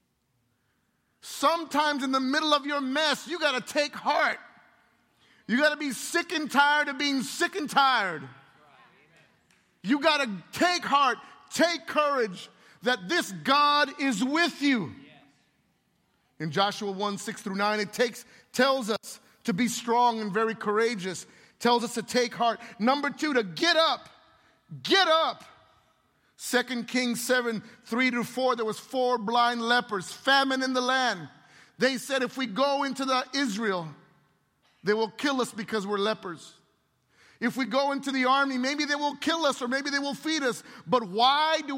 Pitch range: 225-285 Hz